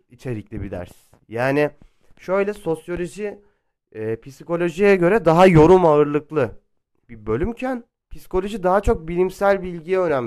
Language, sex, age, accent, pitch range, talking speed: Turkish, male, 30-49, native, 120-165 Hz, 110 wpm